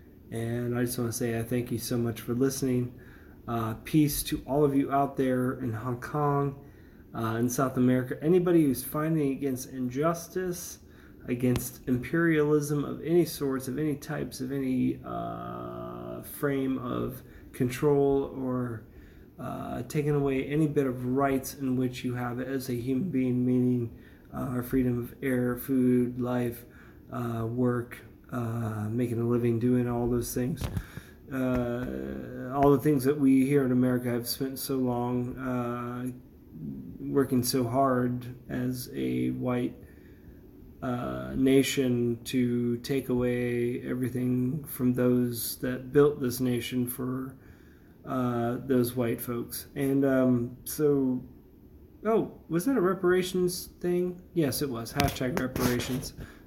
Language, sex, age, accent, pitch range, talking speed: English, male, 30-49, American, 120-135 Hz, 140 wpm